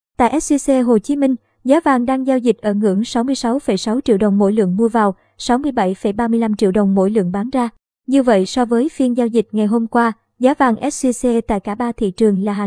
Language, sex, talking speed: Vietnamese, male, 220 wpm